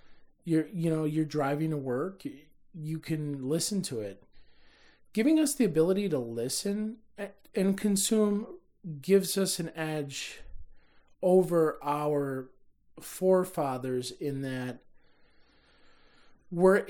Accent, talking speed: American, 105 wpm